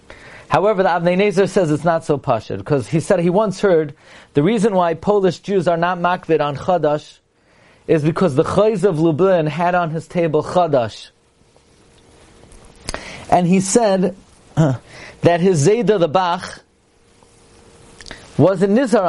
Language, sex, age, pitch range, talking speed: English, male, 40-59, 165-220 Hz, 150 wpm